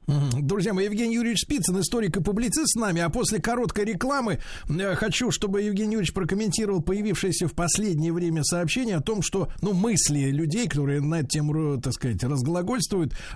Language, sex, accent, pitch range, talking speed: Russian, male, native, 140-200 Hz, 165 wpm